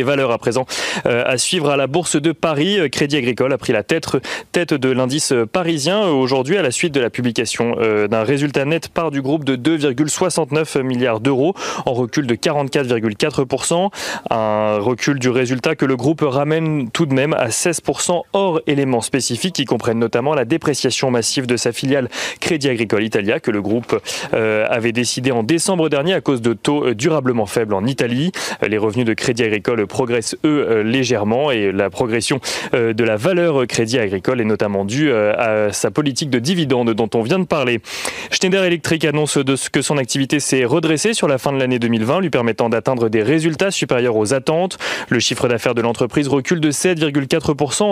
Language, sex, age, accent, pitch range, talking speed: French, male, 30-49, French, 120-160 Hz, 190 wpm